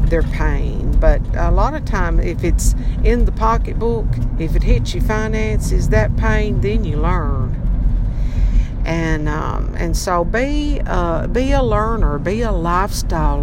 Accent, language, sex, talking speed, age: American, English, female, 150 wpm, 60-79